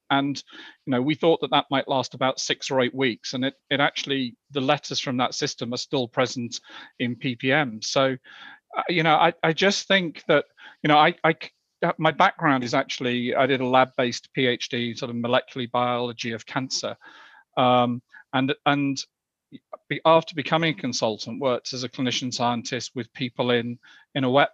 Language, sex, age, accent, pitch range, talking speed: English, male, 40-59, British, 125-145 Hz, 185 wpm